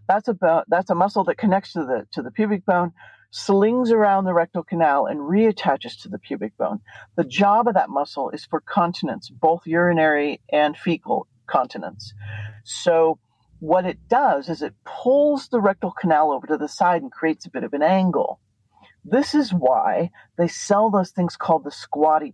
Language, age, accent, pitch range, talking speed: English, 50-69, American, 150-195 Hz, 185 wpm